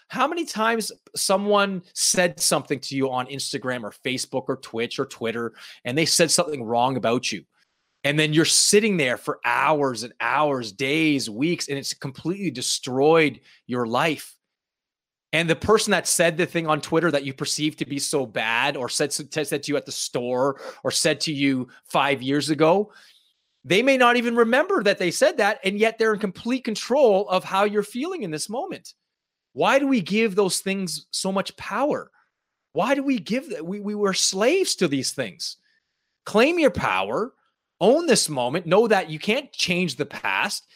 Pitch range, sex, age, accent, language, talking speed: 145-215 Hz, male, 30-49, American, English, 185 wpm